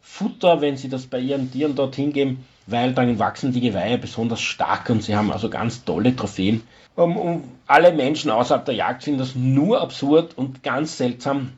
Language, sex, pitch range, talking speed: German, male, 125-150 Hz, 190 wpm